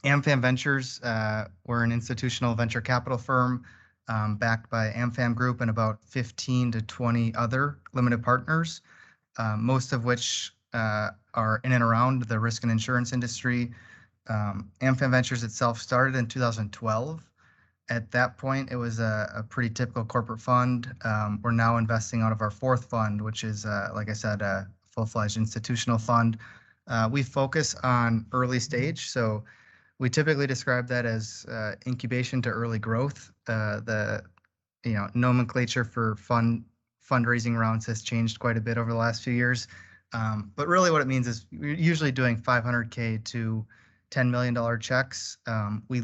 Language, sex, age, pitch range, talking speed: English, male, 20-39, 110-125 Hz, 165 wpm